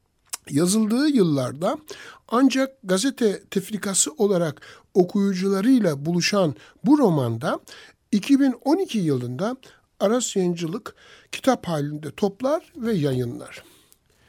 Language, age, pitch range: Turkish, 60-79, 165-230 Hz